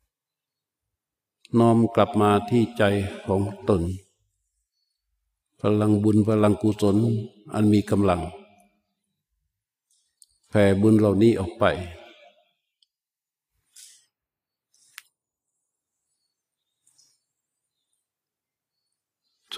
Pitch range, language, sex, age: 105-135 Hz, Thai, male, 50-69